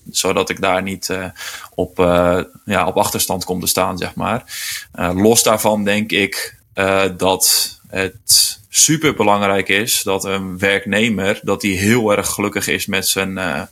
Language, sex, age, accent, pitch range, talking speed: Dutch, male, 20-39, Dutch, 90-100 Hz, 160 wpm